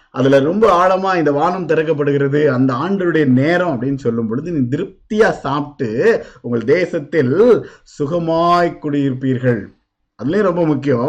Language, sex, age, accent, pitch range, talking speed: Tamil, male, 50-69, native, 150-205 Hz, 95 wpm